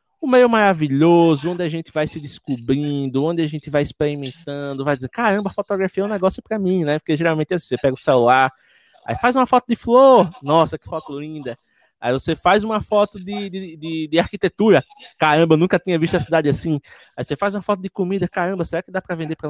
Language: Portuguese